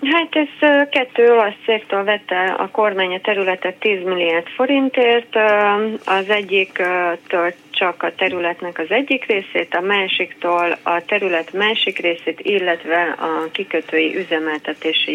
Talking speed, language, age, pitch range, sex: 120 wpm, Hungarian, 30-49, 165-215 Hz, female